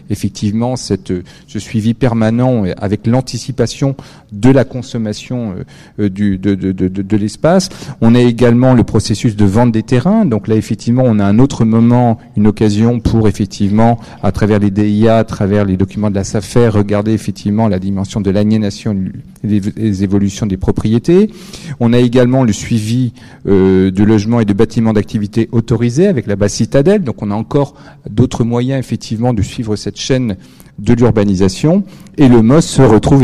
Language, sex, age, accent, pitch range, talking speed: French, male, 40-59, French, 100-125 Hz, 175 wpm